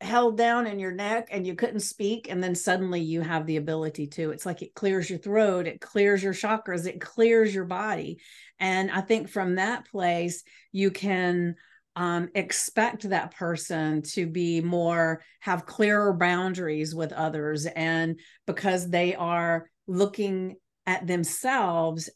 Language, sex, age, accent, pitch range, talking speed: English, female, 50-69, American, 165-195 Hz, 155 wpm